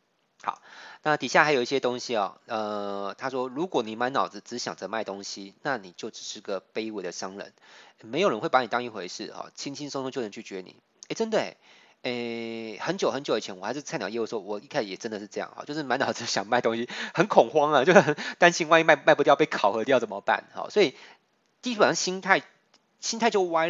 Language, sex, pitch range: Chinese, male, 115-190 Hz